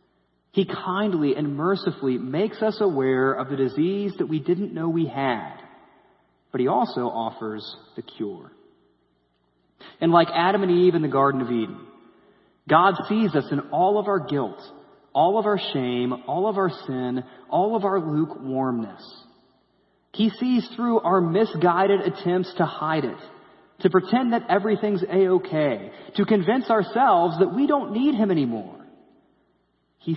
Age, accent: 30-49, American